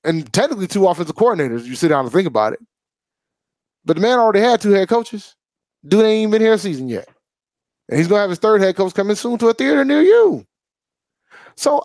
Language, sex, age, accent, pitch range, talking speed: English, male, 30-49, American, 185-260 Hz, 230 wpm